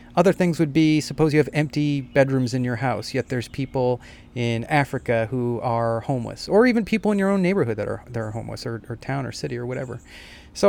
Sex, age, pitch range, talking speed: male, 30-49, 115-145 Hz, 225 wpm